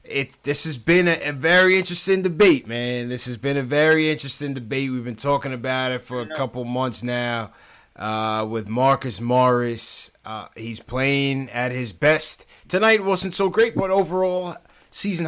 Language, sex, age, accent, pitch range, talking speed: English, male, 20-39, American, 115-145 Hz, 175 wpm